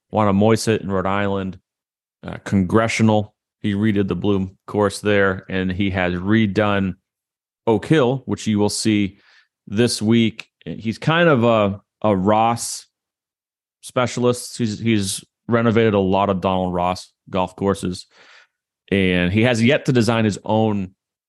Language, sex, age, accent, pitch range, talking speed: English, male, 30-49, American, 95-110 Hz, 140 wpm